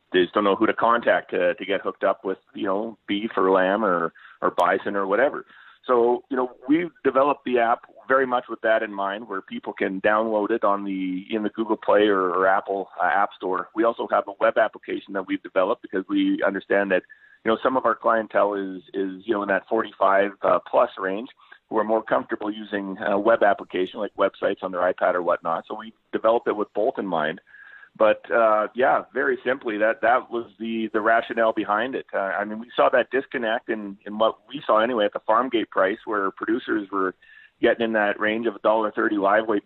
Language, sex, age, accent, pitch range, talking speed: English, male, 40-59, American, 100-125 Hz, 225 wpm